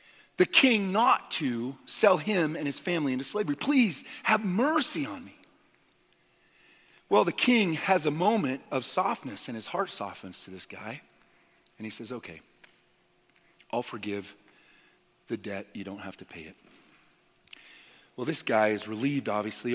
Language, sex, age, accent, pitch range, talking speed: English, male, 40-59, American, 105-155 Hz, 155 wpm